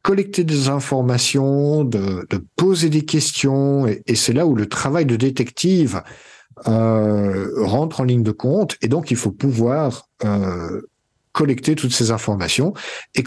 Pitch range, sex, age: 110-145 Hz, male, 50-69